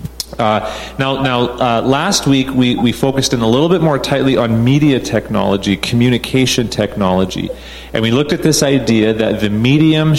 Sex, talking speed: male, 170 wpm